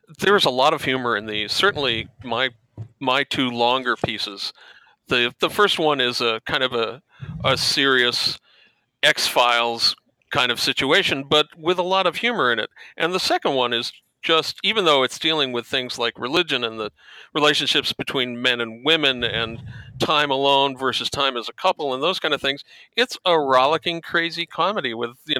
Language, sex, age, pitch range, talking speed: English, male, 40-59, 120-150 Hz, 180 wpm